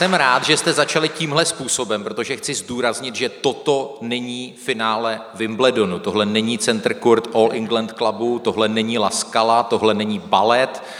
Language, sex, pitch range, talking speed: Czech, male, 105-120 Hz, 155 wpm